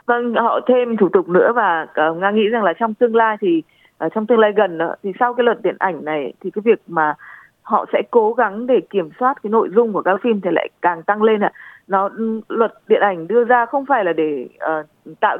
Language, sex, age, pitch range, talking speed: Vietnamese, female, 20-39, 180-250 Hz, 255 wpm